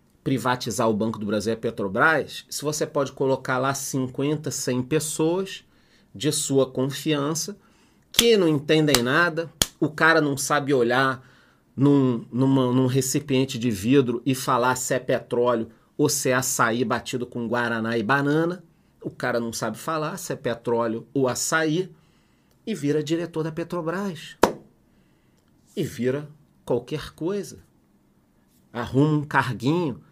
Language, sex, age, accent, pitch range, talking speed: Portuguese, male, 40-59, Brazilian, 125-155 Hz, 135 wpm